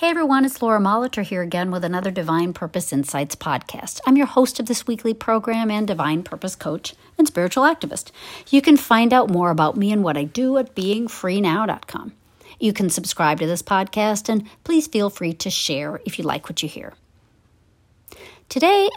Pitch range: 150-210 Hz